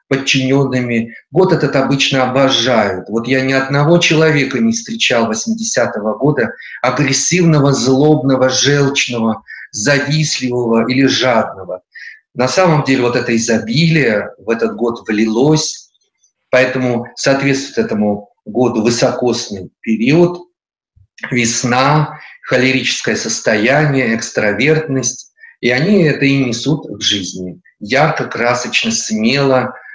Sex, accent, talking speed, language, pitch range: male, native, 100 wpm, Russian, 120-145 Hz